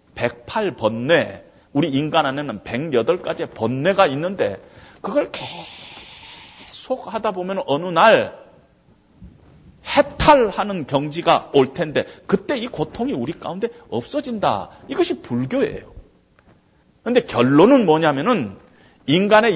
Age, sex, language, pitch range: 40-59, male, Korean, 145-230 Hz